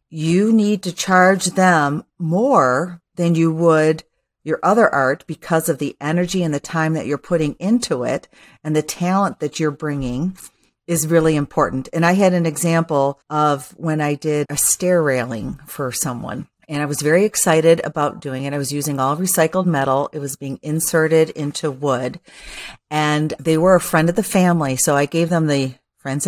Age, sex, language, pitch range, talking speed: 40-59, female, English, 145-175 Hz, 185 wpm